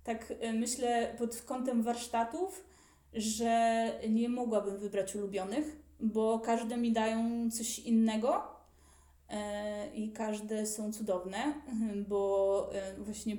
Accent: native